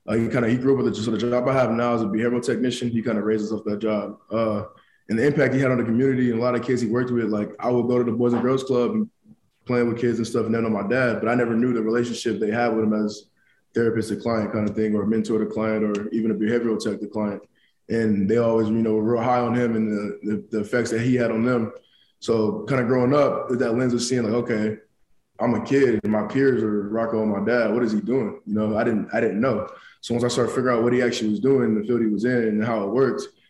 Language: English